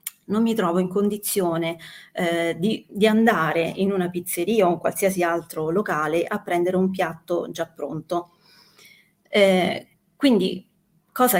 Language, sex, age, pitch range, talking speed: Italian, female, 30-49, 175-210 Hz, 135 wpm